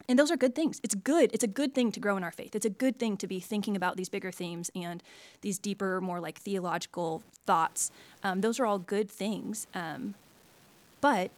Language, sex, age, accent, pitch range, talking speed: English, female, 20-39, American, 180-225 Hz, 220 wpm